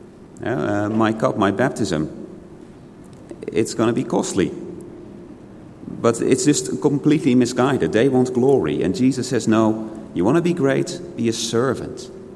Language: English